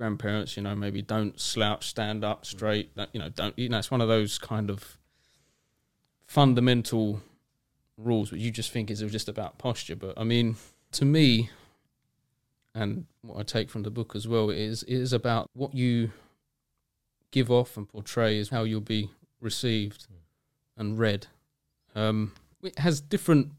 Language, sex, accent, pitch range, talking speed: English, male, British, 105-125 Hz, 170 wpm